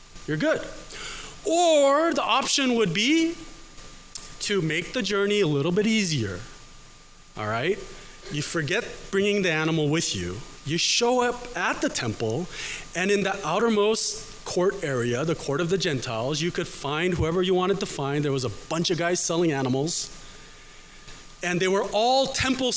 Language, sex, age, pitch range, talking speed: English, male, 30-49, 150-215 Hz, 165 wpm